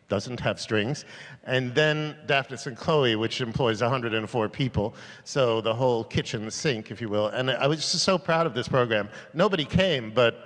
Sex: male